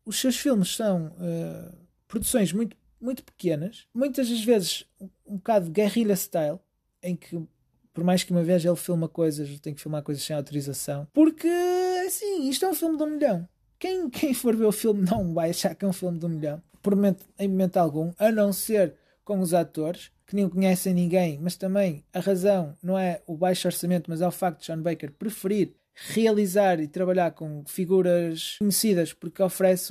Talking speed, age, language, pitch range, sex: 195 wpm, 20-39, Portuguese, 170-230 Hz, male